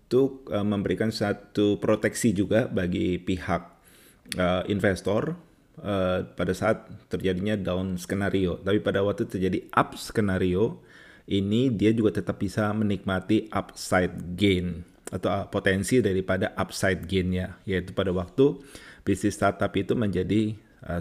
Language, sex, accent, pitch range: Indonesian, male, native, 90-110 Hz